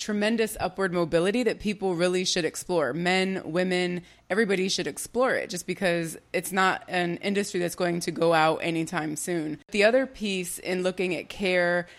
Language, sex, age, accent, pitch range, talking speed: English, female, 20-39, American, 170-200 Hz, 170 wpm